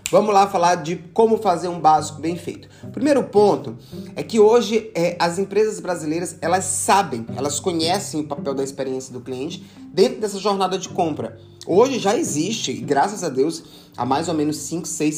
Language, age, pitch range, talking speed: Portuguese, 20-39, 140-185 Hz, 180 wpm